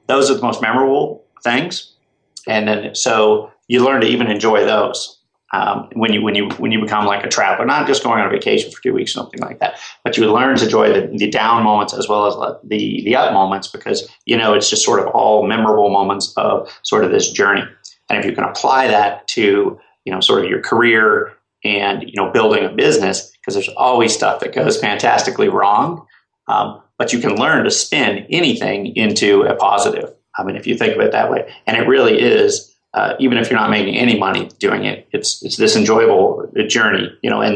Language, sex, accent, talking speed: English, male, American, 220 wpm